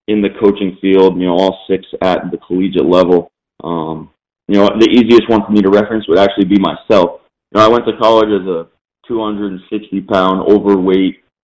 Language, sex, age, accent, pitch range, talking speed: English, male, 20-39, American, 90-110 Hz, 190 wpm